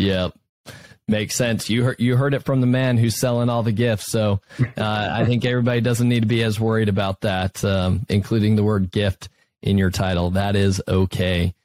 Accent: American